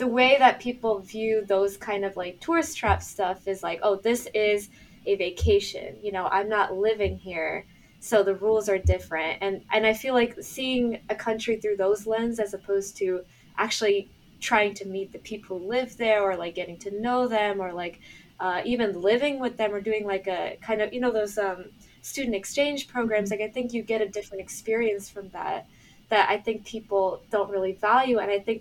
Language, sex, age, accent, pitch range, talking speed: English, female, 20-39, American, 195-225 Hz, 210 wpm